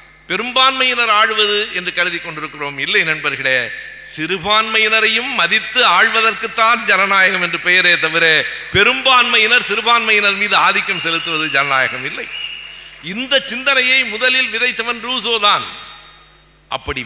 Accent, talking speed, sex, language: native, 90 wpm, male, Tamil